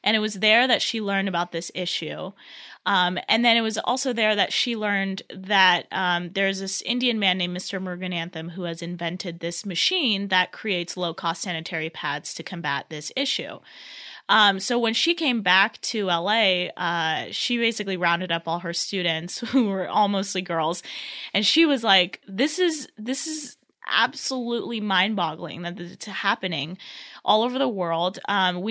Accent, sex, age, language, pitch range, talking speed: American, female, 20-39, English, 175-215 Hz, 175 wpm